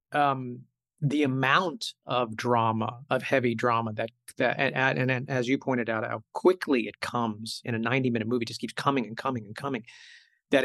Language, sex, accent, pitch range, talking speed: English, male, American, 120-145 Hz, 190 wpm